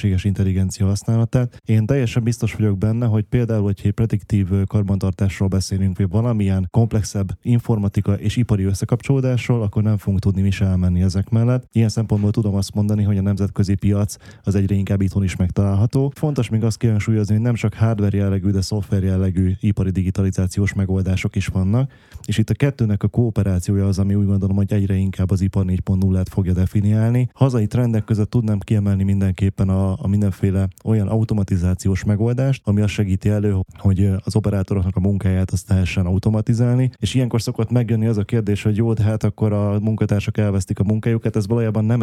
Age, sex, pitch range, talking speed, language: 10-29, male, 95-115 Hz, 175 wpm, Hungarian